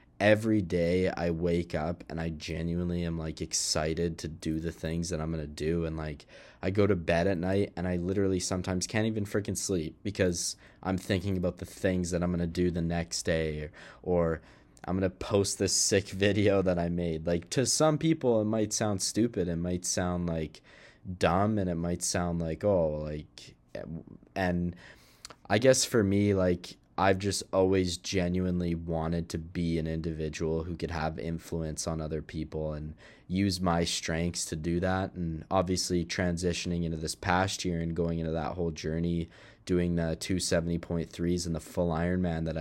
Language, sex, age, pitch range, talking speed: English, male, 20-39, 80-95 Hz, 185 wpm